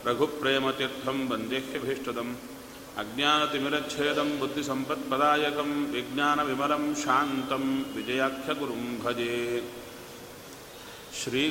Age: 40-59